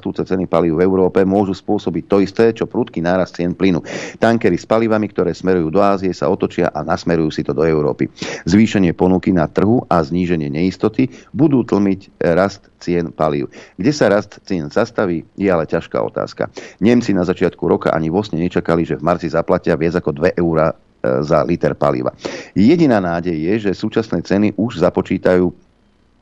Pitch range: 85-100 Hz